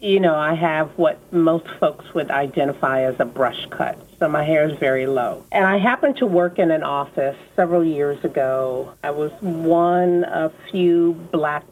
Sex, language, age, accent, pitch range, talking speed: female, English, 50-69, American, 150-190 Hz, 185 wpm